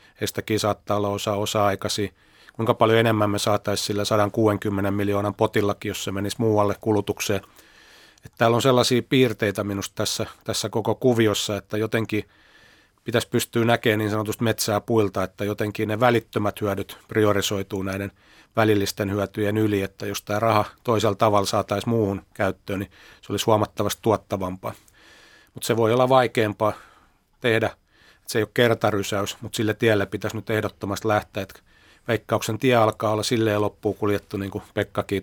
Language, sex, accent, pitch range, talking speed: Finnish, male, native, 100-110 Hz, 155 wpm